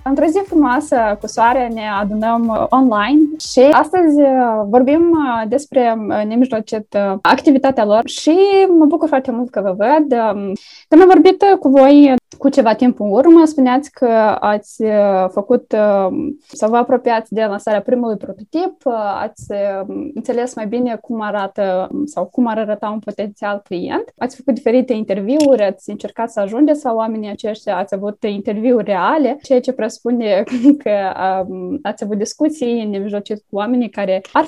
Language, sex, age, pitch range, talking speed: Romanian, female, 20-39, 205-270 Hz, 145 wpm